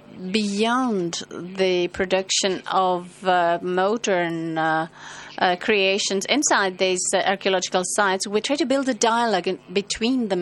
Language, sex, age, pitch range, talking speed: French, female, 30-49, 190-230 Hz, 125 wpm